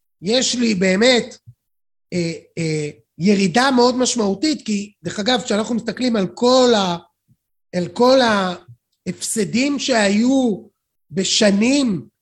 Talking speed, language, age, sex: 105 wpm, Hebrew, 30-49, male